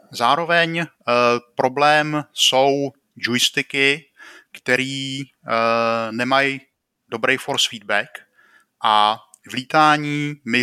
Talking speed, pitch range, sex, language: 85 wpm, 115-145 Hz, male, Czech